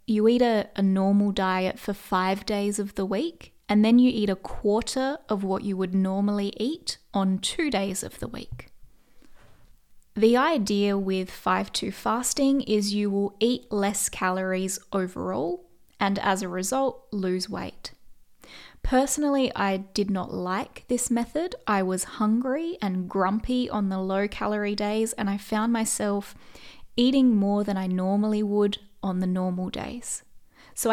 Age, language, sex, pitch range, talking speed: 20-39, English, female, 195-235 Hz, 155 wpm